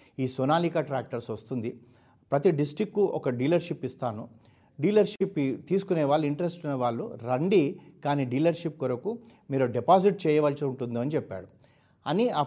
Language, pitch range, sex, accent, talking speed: Telugu, 120-160 Hz, male, native, 125 wpm